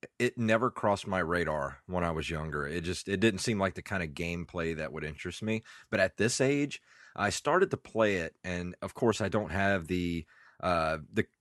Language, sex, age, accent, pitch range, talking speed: English, male, 30-49, American, 85-110 Hz, 210 wpm